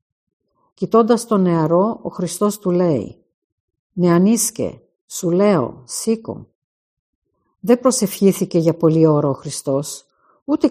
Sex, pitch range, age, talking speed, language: female, 155-200 Hz, 50-69, 105 wpm, Greek